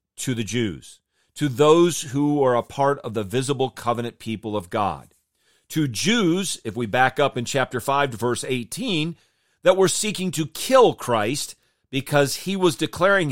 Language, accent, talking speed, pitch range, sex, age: English, American, 165 wpm, 120-170 Hz, male, 40-59